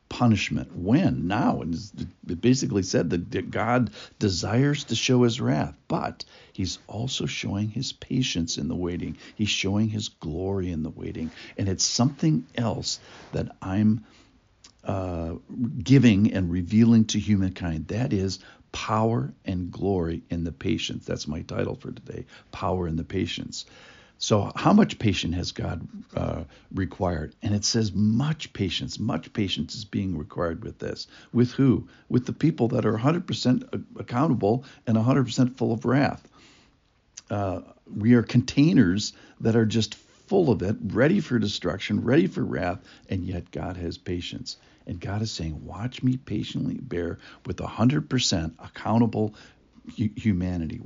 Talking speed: 150 wpm